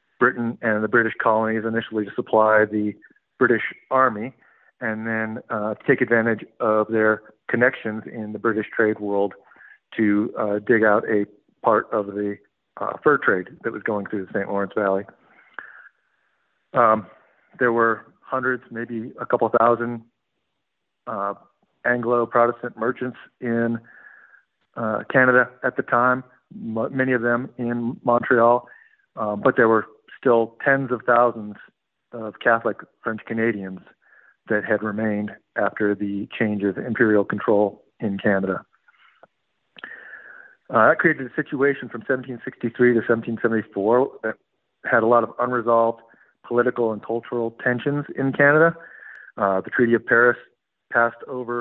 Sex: male